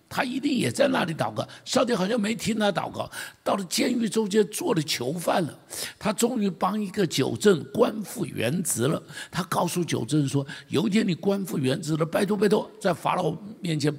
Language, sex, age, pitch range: Chinese, male, 60-79, 150-220 Hz